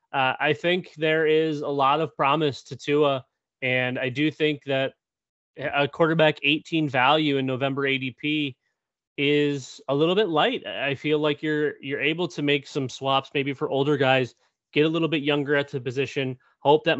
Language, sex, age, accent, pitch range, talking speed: English, male, 30-49, American, 135-155 Hz, 185 wpm